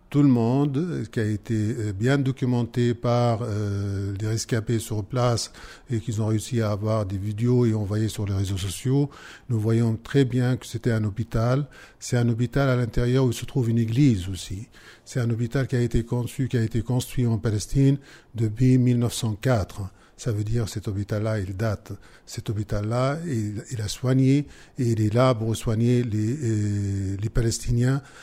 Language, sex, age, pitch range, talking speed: French, male, 50-69, 110-130 Hz, 180 wpm